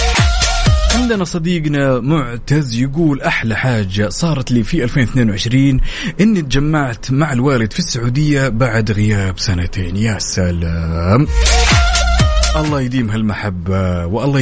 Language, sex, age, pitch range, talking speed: Arabic, male, 30-49, 105-145 Hz, 105 wpm